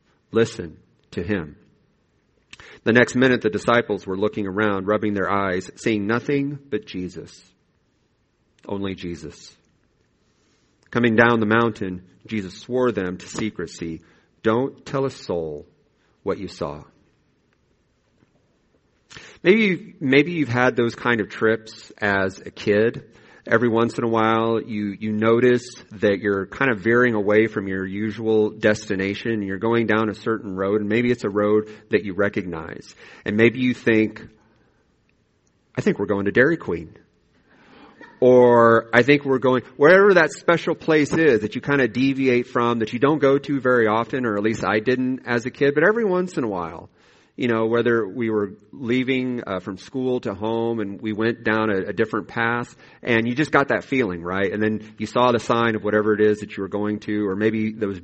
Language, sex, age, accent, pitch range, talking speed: English, male, 40-59, American, 105-125 Hz, 175 wpm